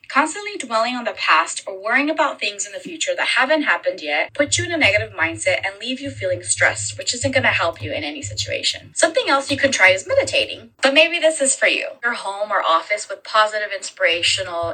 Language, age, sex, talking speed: English, 20-39, female, 225 wpm